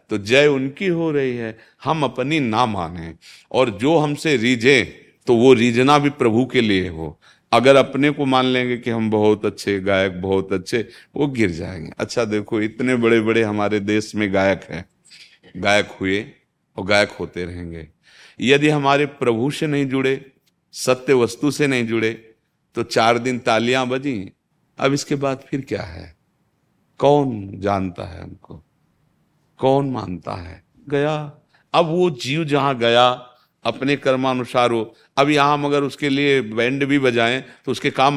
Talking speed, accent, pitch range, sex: 160 wpm, native, 105-140 Hz, male